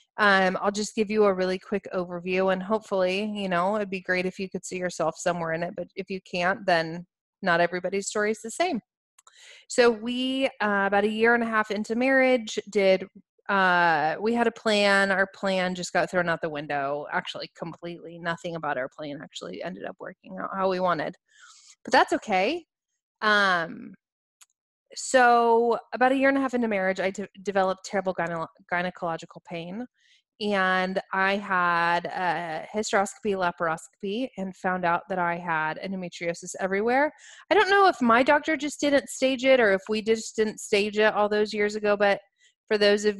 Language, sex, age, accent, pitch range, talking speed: English, female, 20-39, American, 180-220 Hz, 185 wpm